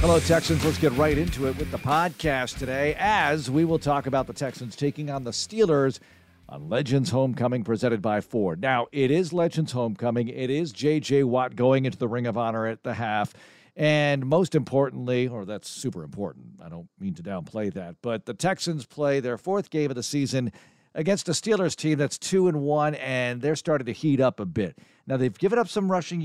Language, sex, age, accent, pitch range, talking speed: English, male, 50-69, American, 120-145 Hz, 210 wpm